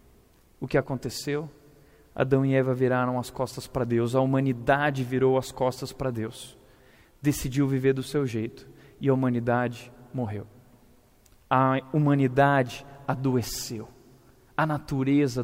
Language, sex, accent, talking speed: Portuguese, male, Brazilian, 125 wpm